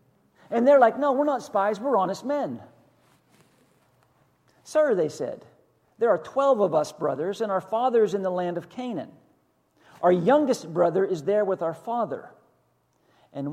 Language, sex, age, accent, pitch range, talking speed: English, male, 50-69, American, 175-250 Hz, 160 wpm